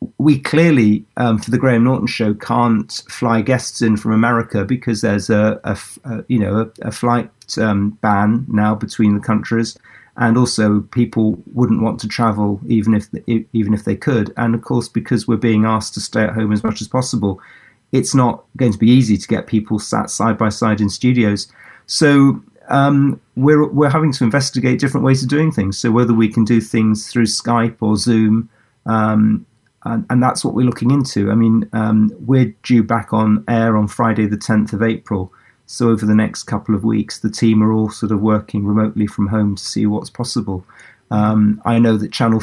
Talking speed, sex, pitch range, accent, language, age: 205 wpm, male, 105-120 Hz, British, English, 40-59